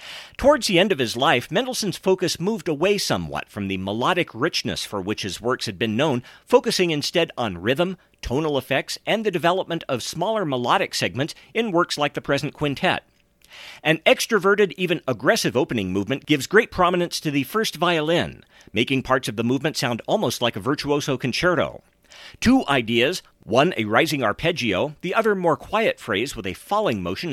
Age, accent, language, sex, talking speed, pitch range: 50-69, American, English, male, 175 wpm, 130-180 Hz